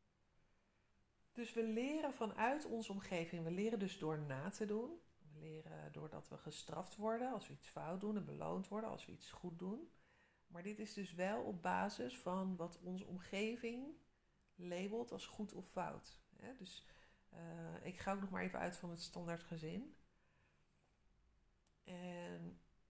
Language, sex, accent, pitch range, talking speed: Dutch, female, Dutch, 175-215 Hz, 160 wpm